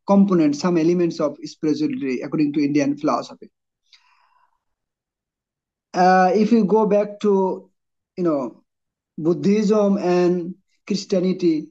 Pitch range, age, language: 165-210 Hz, 50-69, English